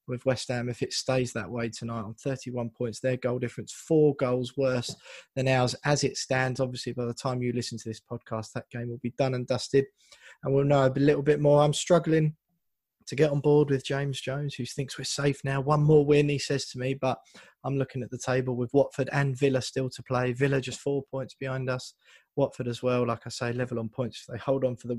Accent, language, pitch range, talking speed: British, English, 120-145 Hz, 240 wpm